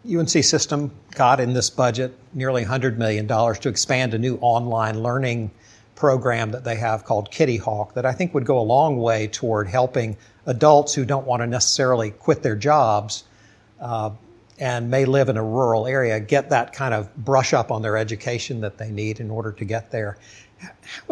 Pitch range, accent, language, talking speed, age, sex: 110-130 Hz, American, English, 190 wpm, 60-79, male